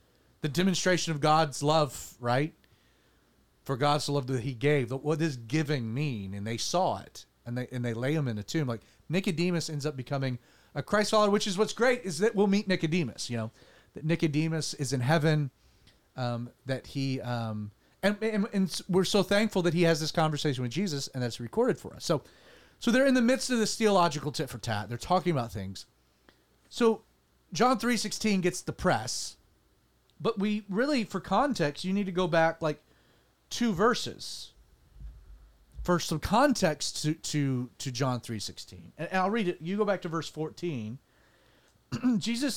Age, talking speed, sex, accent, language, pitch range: 30-49, 180 wpm, male, American, English, 130-195 Hz